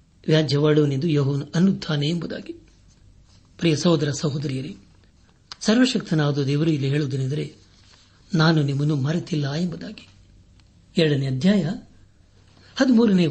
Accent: native